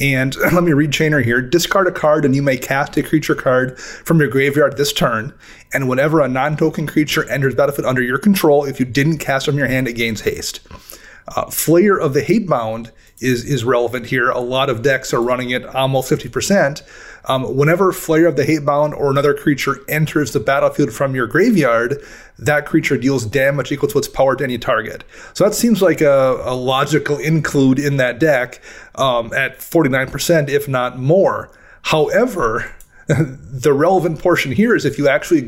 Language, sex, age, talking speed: English, male, 30-49, 190 wpm